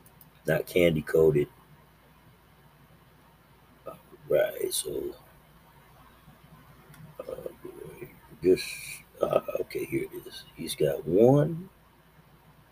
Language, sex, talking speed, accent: English, male, 65 wpm, American